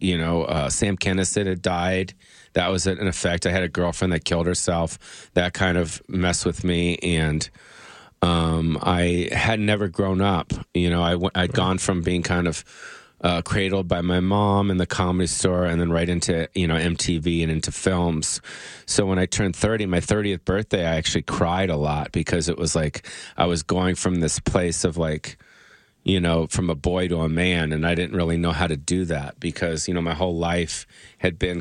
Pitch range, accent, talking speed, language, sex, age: 85-95 Hz, American, 205 wpm, English, male, 30-49